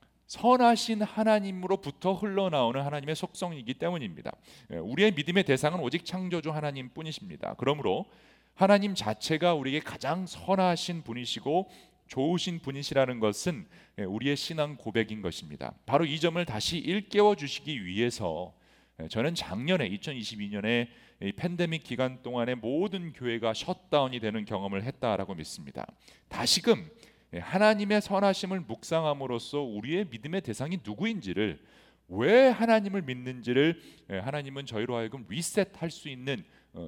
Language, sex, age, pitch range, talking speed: English, male, 40-59, 125-185 Hz, 110 wpm